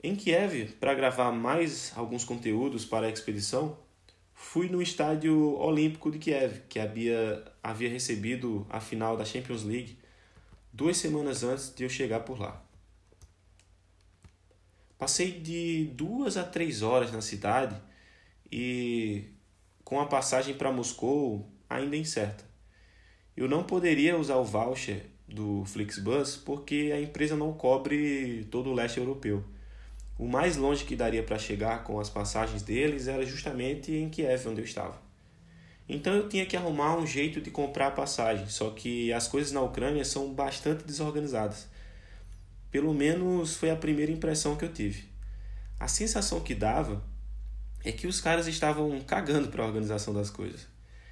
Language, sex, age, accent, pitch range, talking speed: Portuguese, male, 20-39, Brazilian, 105-150 Hz, 150 wpm